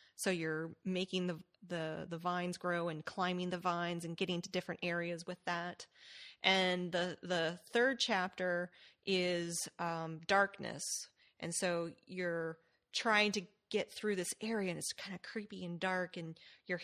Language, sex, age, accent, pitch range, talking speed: English, female, 30-49, American, 170-200 Hz, 155 wpm